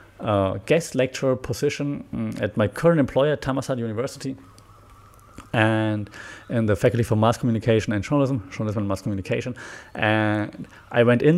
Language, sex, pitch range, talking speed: English, male, 105-130 Hz, 140 wpm